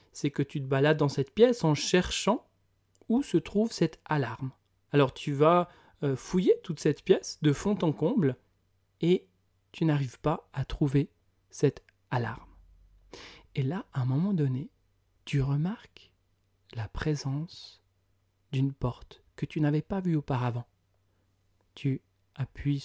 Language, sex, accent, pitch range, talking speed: French, male, French, 100-160 Hz, 140 wpm